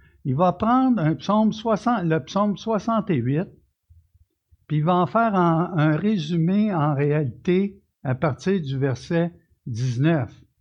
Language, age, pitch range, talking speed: French, 60-79, 130-190 Hz, 120 wpm